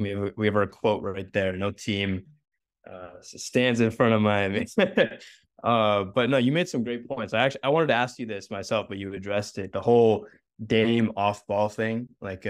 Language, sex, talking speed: English, male, 210 wpm